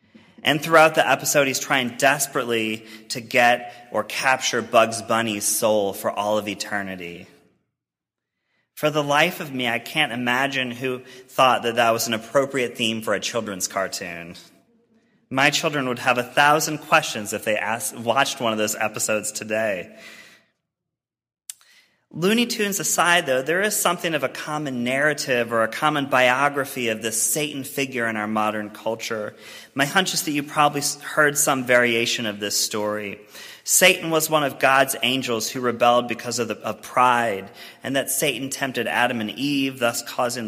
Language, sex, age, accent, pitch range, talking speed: English, male, 30-49, American, 110-140 Hz, 160 wpm